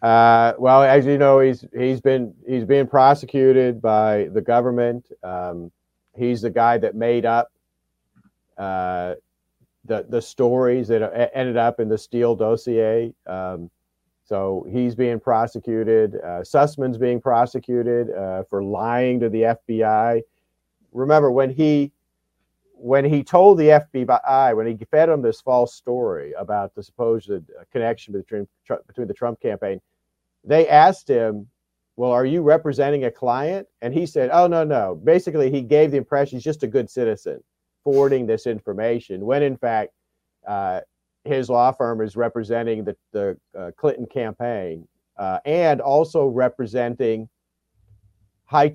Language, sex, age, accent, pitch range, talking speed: English, male, 50-69, American, 110-135 Hz, 145 wpm